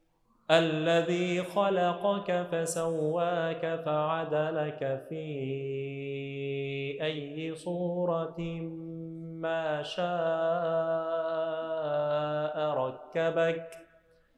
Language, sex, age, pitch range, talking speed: Arabic, male, 30-49, 165-205 Hz, 40 wpm